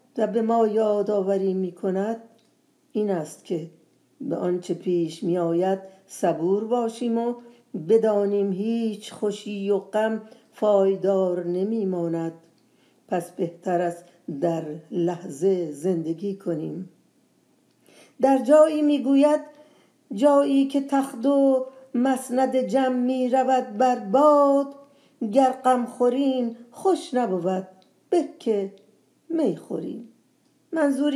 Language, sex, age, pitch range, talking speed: Persian, female, 50-69, 190-245 Hz, 100 wpm